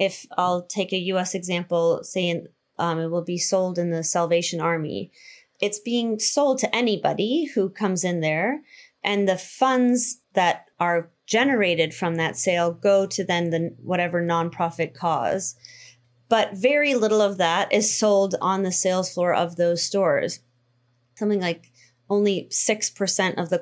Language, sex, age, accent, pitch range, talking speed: English, female, 30-49, American, 170-200 Hz, 150 wpm